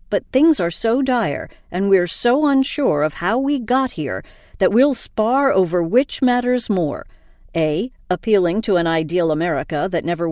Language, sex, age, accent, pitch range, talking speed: English, female, 50-69, American, 170-245 Hz, 170 wpm